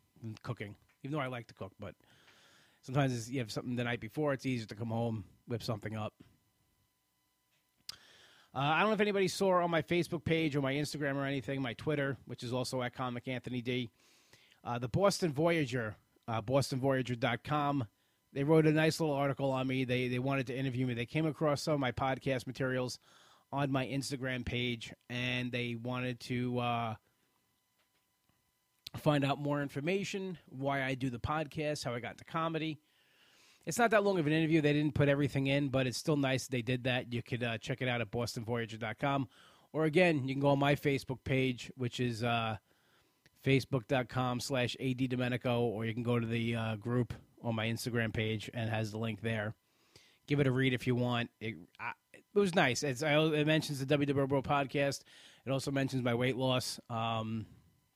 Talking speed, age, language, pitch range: 195 wpm, 30-49, English, 120-145 Hz